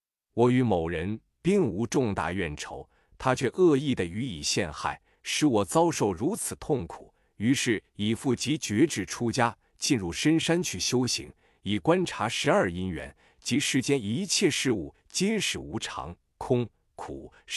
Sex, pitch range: male, 105-140 Hz